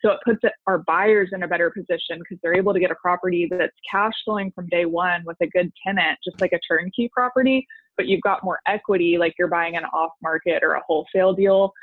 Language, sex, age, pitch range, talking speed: English, female, 20-39, 170-200 Hz, 240 wpm